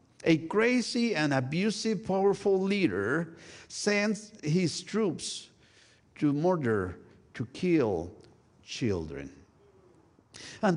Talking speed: 85 wpm